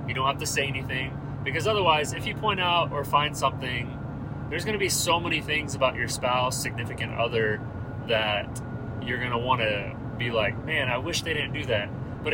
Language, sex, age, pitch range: English, male, 30-49, 115-140 Hz